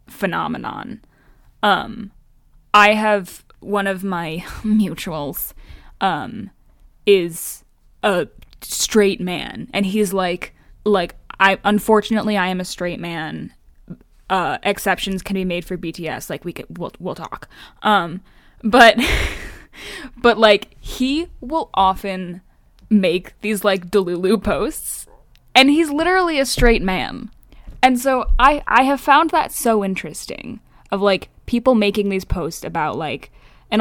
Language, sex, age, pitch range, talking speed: English, female, 10-29, 185-245 Hz, 130 wpm